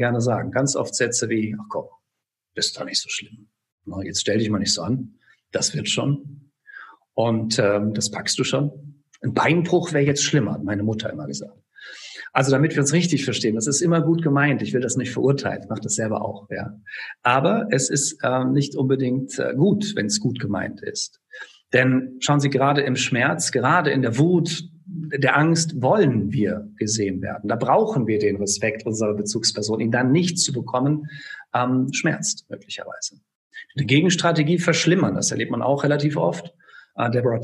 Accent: German